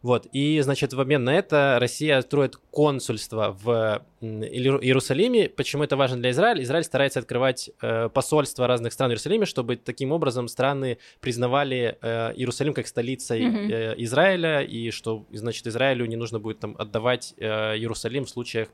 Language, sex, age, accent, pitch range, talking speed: Russian, male, 20-39, native, 115-145 Hz, 160 wpm